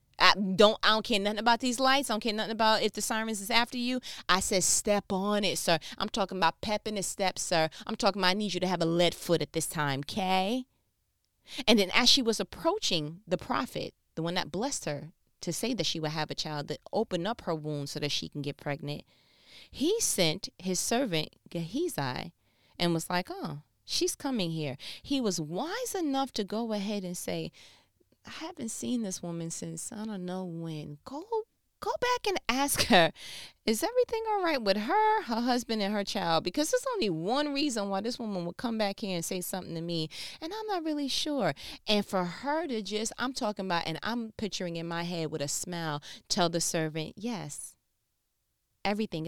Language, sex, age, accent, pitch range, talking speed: English, female, 30-49, American, 165-240 Hz, 210 wpm